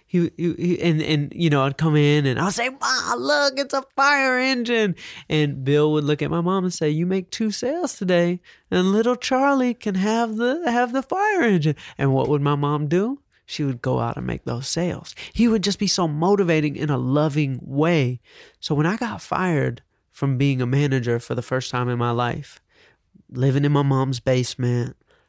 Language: English